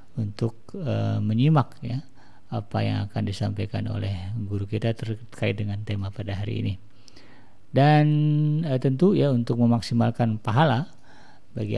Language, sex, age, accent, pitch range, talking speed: Indonesian, male, 50-69, native, 105-125 Hz, 125 wpm